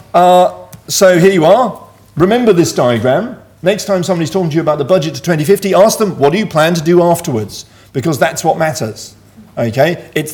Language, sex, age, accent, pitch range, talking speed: English, male, 40-59, British, 130-180 Hz, 195 wpm